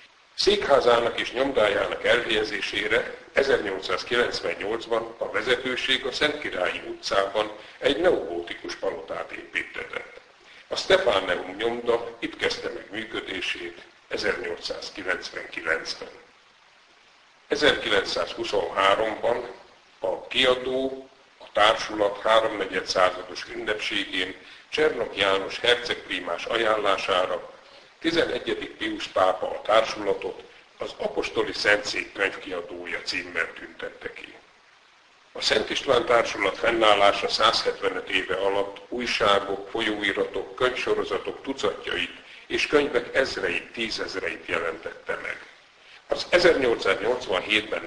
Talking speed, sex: 85 wpm, male